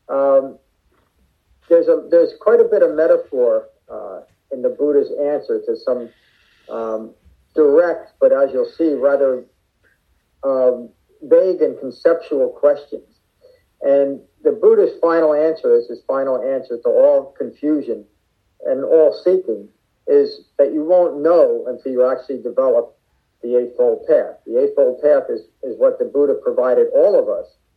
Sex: male